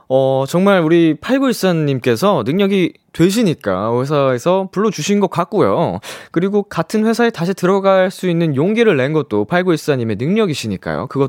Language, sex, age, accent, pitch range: Korean, male, 20-39, native, 110-180 Hz